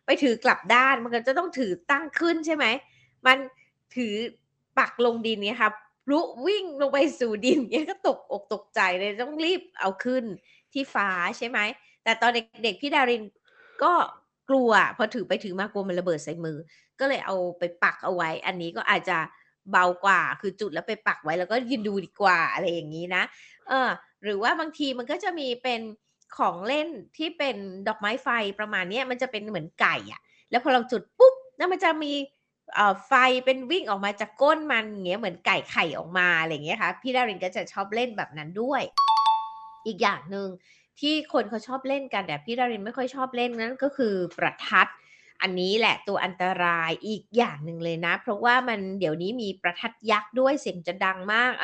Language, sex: Thai, female